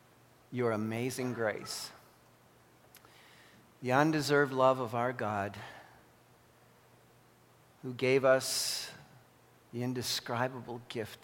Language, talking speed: English, 80 wpm